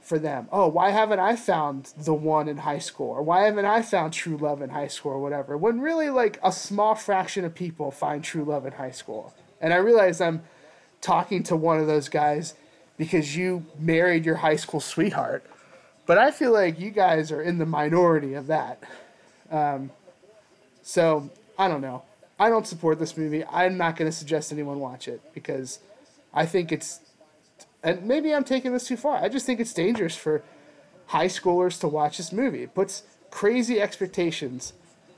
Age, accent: 20-39, American